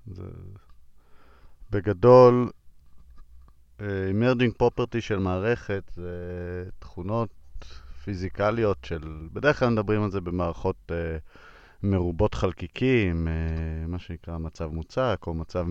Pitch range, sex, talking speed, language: 85-115 Hz, male, 105 wpm, English